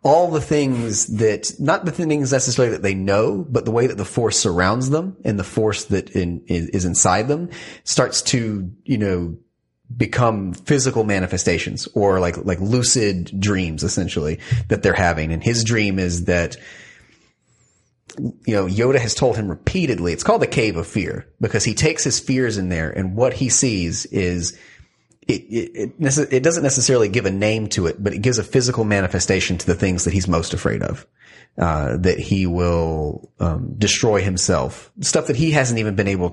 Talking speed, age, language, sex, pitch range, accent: 185 wpm, 30-49, English, male, 95-125 Hz, American